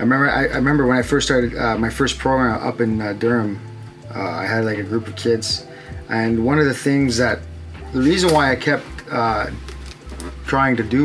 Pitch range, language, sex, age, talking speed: 110-135 Hz, English, male, 20-39, 215 wpm